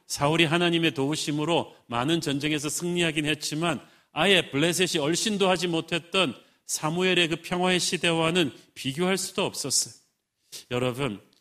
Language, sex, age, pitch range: Korean, male, 40-59, 140-170 Hz